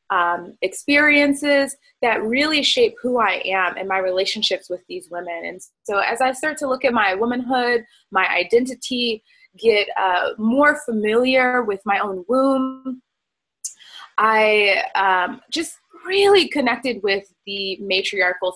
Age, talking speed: 20-39, 135 wpm